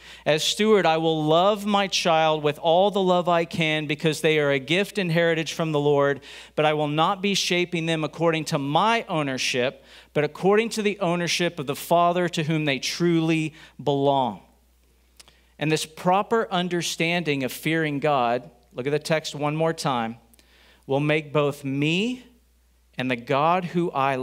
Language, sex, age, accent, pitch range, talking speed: English, male, 40-59, American, 115-160 Hz, 175 wpm